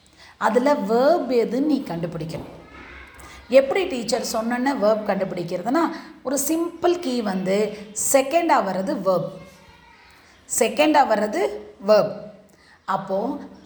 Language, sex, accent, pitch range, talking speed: Tamil, female, native, 195-265 Hz, 90 wpm